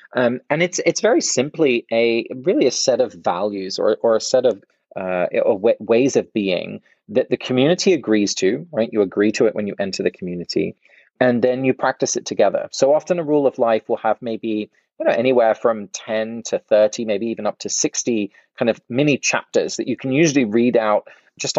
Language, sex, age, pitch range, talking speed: English, male, 30-49, 105-135 Hz, 210 wpm